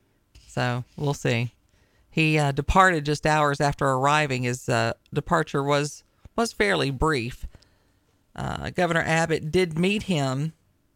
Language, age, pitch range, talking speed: English, 40-59, 130-170 Hz, 125 wpm